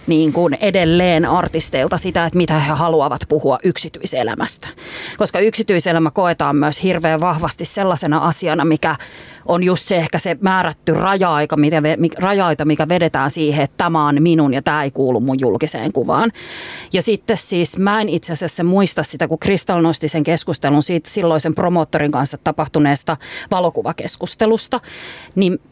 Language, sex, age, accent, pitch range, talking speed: Finnish, female, 30-49, native, 155-180 Hz, 145 wpm